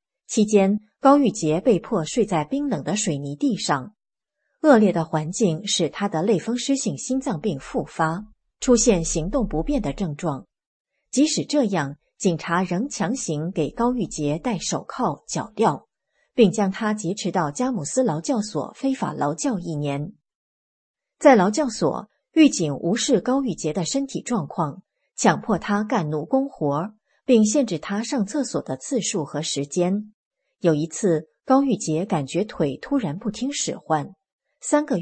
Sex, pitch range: female, 165-250 Hz